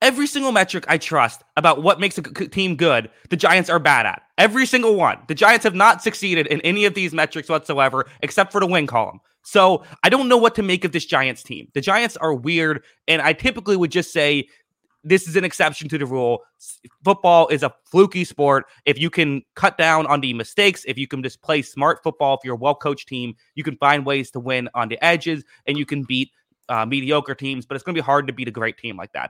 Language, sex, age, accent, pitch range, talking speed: English, male, 20-39, American, 130-175 Hz, 240 wpm